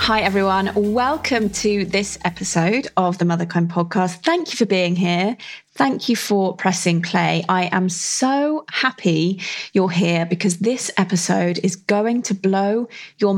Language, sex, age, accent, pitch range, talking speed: English, female, 20-39, British, 170-215 Hz, 155 wpm